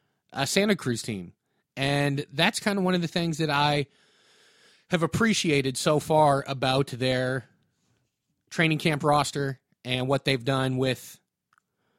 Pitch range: 130-165 Hz